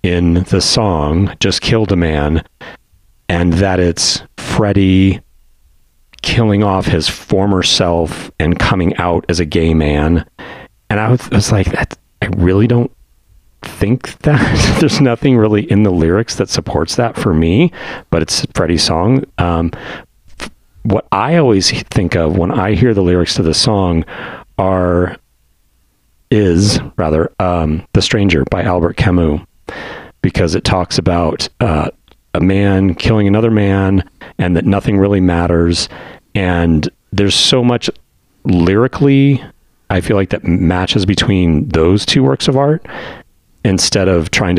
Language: English